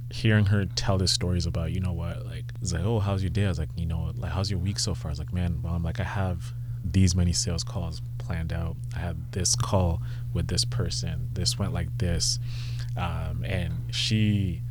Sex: male